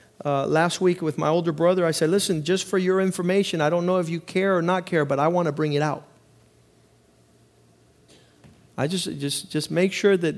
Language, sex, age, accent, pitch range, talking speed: English, male, 50-69, American, 150-195 Hz, 215 wpm